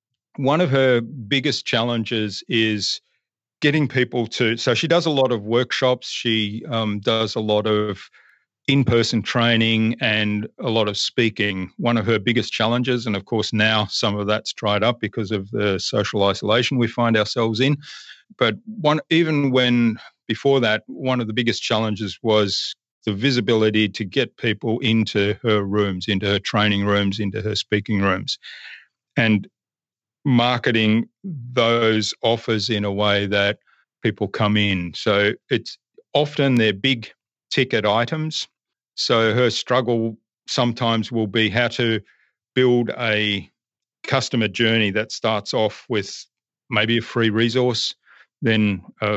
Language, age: English, 40-59